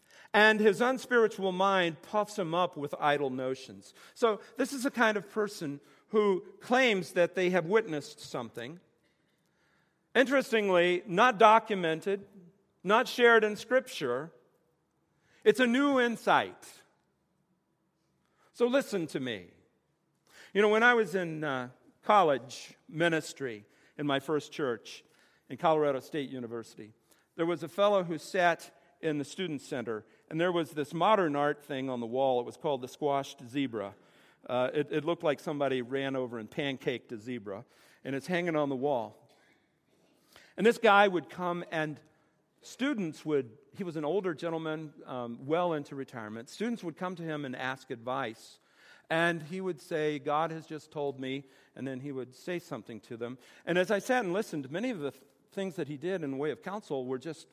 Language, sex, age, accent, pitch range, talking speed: English, male, 50-69, American, 135-195 Hz, 170 wpm